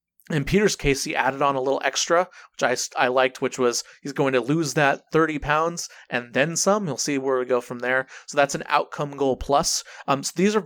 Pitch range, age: 135-165 Hz, 30-49